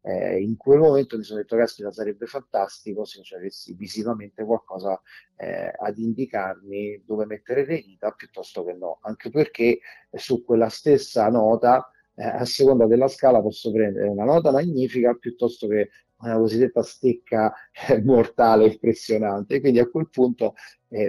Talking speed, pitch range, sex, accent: 155 wpm, 105-120 Hz, male, native